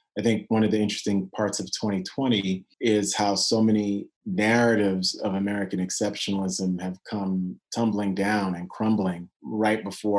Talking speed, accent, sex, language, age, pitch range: 145 wpm, American, male, English, 30-49, 95-110 Hz